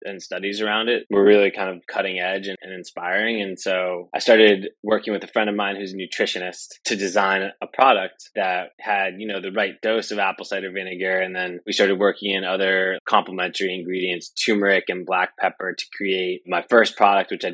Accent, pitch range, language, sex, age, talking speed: American, 95-105 Hz, English, male, 20-39, 210 wpm